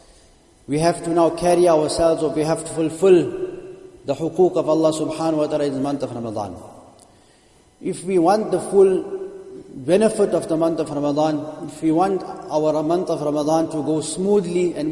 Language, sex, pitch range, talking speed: English, male, 155-180 Hz, 180 wpm